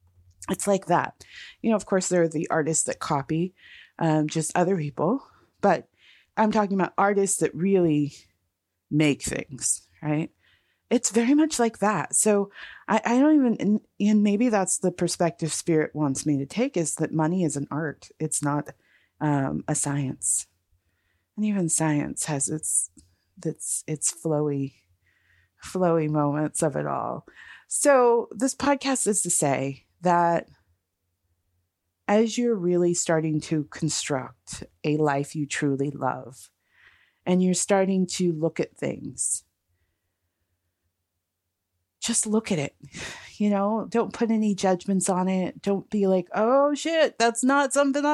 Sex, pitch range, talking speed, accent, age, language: female, 140-210 Hz, 145 wpm, American, 30-49, English